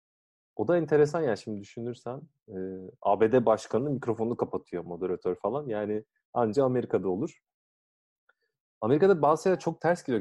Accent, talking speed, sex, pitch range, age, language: native, 135 wpm, male, 105-135 Hz, 40-59, Turkish